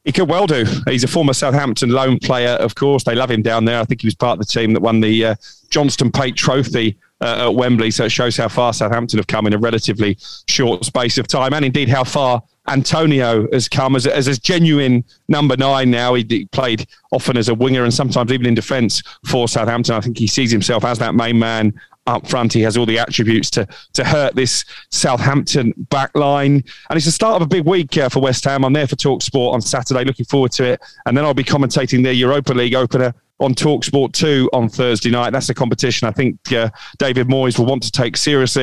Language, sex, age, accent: English, male, 40-59, British